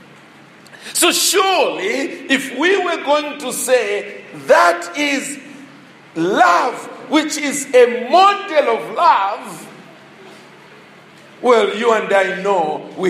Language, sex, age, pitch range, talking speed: English, male, 50-69, 225-310 Hz, 105 wpm